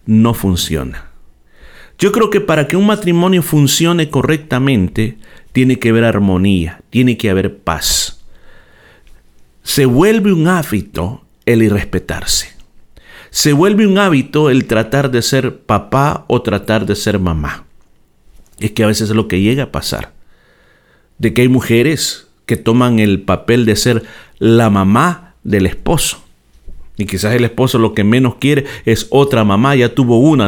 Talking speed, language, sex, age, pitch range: 150 wpm, Spanish, male, 50-69, 90-140 Hz